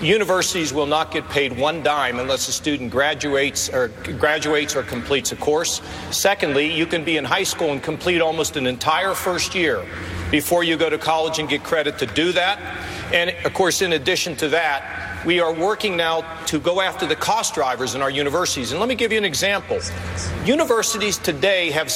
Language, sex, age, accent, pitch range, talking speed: English, male, 50-69, American, 155-215 Hz, 195 wpm